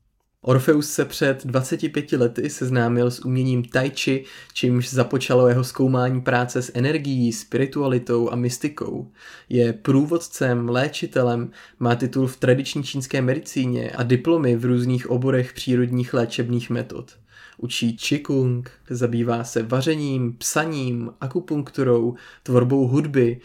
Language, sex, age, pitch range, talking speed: Czech, male, 20-39, 120-135 Hz, 115 wpm